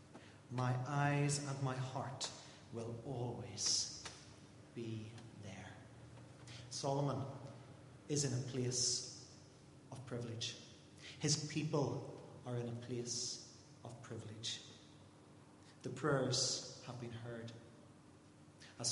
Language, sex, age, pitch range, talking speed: English, male, 40-59, 120-140 Hz, 95 wpm